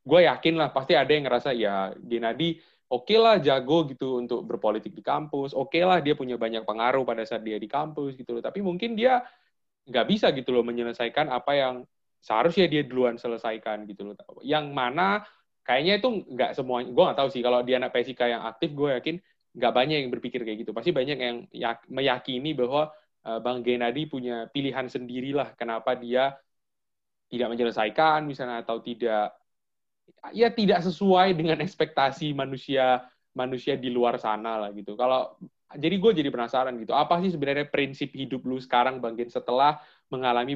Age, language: 20-39, Indonesian